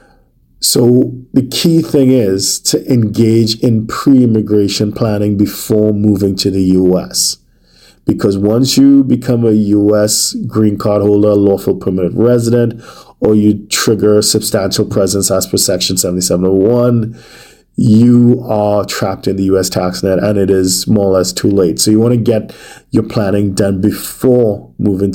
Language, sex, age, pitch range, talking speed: English, male, 50-69, 100-120 Hz, 145 wpm